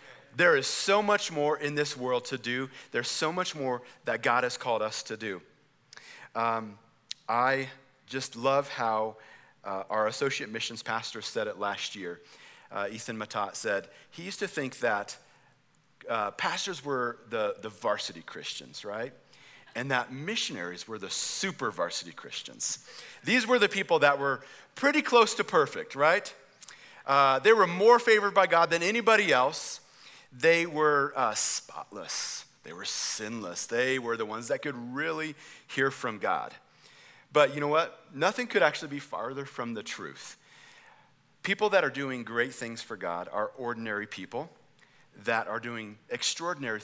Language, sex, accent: English, male, American